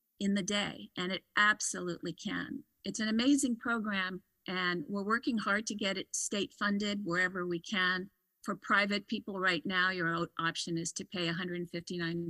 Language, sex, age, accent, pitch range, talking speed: English, female, 50-69, American, 170-200 Hz, 165 wpm